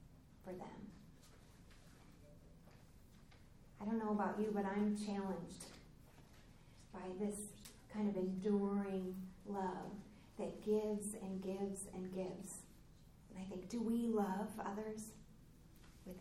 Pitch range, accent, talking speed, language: 190-215 Hz, American, 105 wpm, English